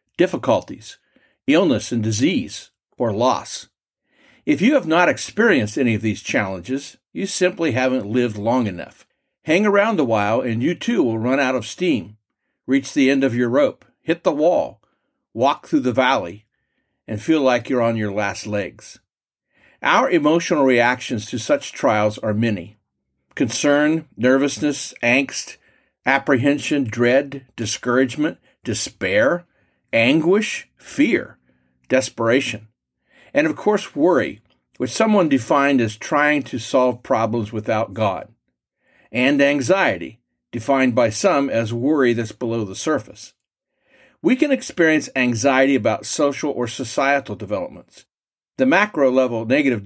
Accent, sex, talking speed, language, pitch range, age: American, male, 130 wpm, English, 110-140 Hz, 50-69